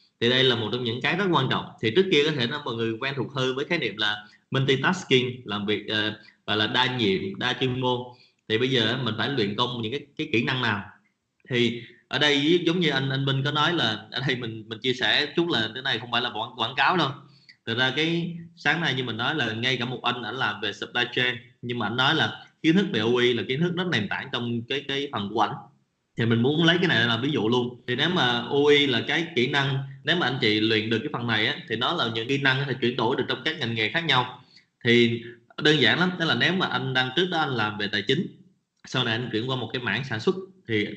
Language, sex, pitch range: Vietnamese, male, 115-150 Hz